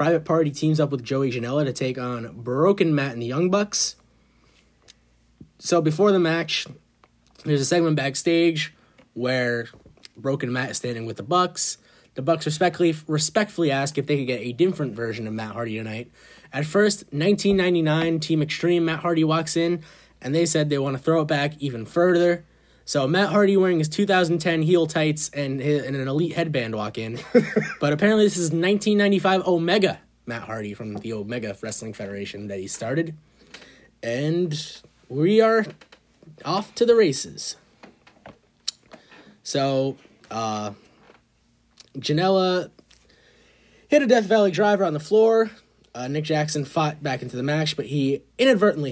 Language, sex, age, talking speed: English, male, 20-39, 160 wpm